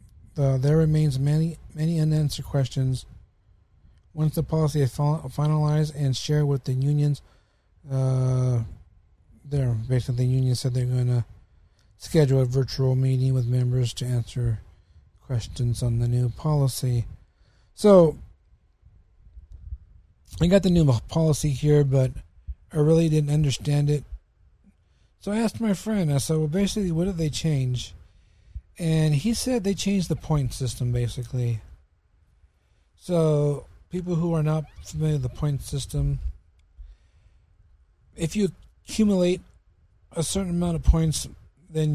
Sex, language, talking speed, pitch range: male, English, 130 wpm, 95-150 Hz